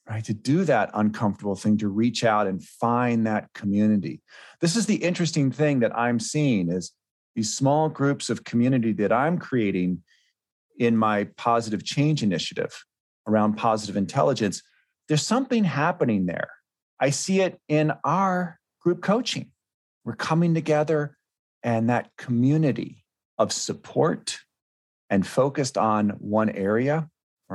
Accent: American